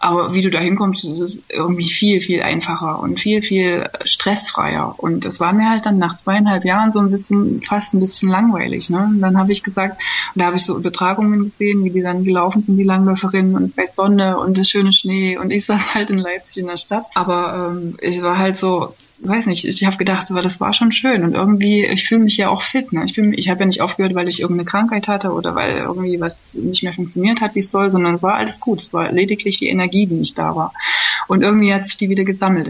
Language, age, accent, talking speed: German, 20-39, German, 250 wpm